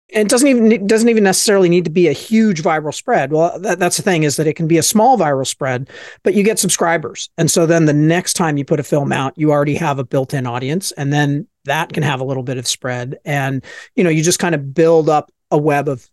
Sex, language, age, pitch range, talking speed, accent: male, English, 40-59, 140-175 Hz, 260 wpm, American